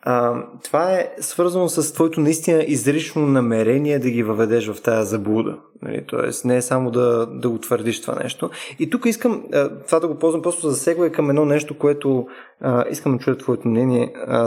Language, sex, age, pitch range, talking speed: Bulgarian, male, 20-39, 120-185 Hz, 190 wpm